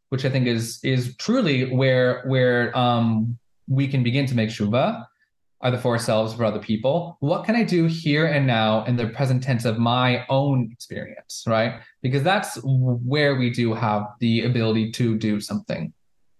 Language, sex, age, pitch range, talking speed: English, male, 20-39, 120-145 Hz, 180 wpm